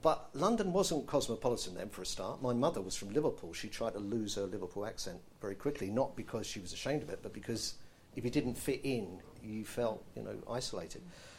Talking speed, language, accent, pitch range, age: 215 wpm, English, British, 105-130 Hz, 50-69